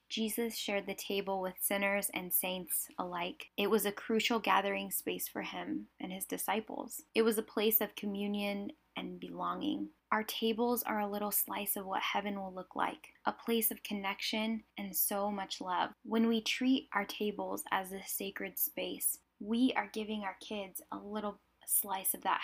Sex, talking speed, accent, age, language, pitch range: female, 180 wpm, American, 10-29, English, 190-230 Hz